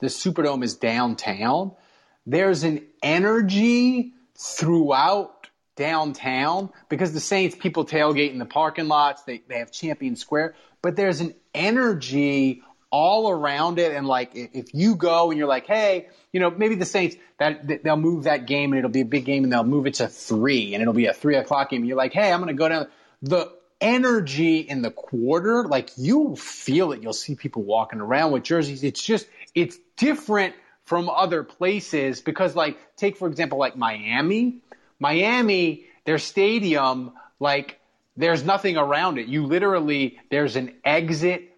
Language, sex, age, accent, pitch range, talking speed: English, male, 30-49, American, 135-180 Hz, 175 wpm